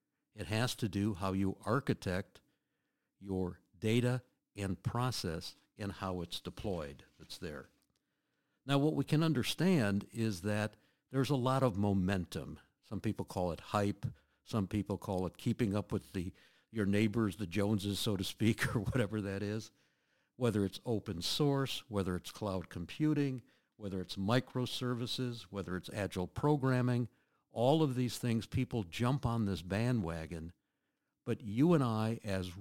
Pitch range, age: 95-125 Hz, 60-79